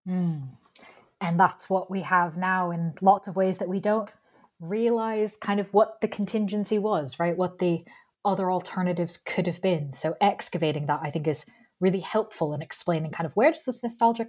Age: 20-39